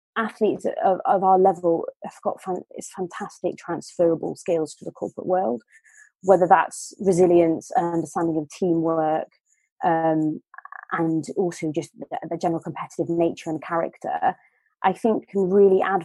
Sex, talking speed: female, 140 wpm